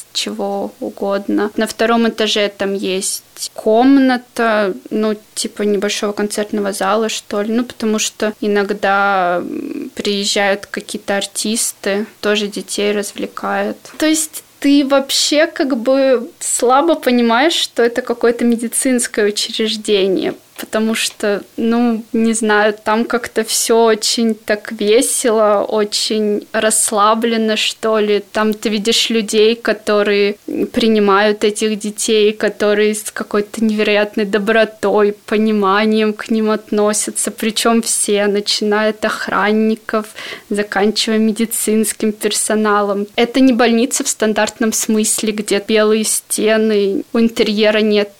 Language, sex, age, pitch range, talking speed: Russian, female, 20-39, 210-230 Hz, 110 wpm